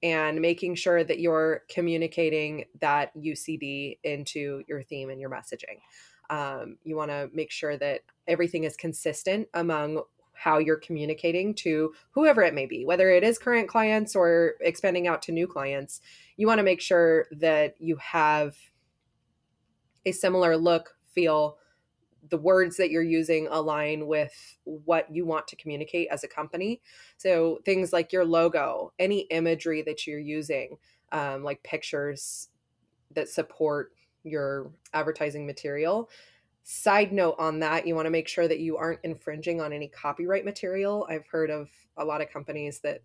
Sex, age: female, 20-39